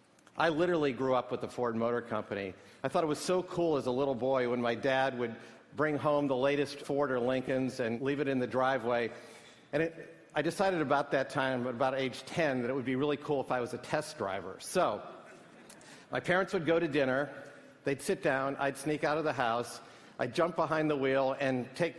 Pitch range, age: 125-150 Hz, 50-69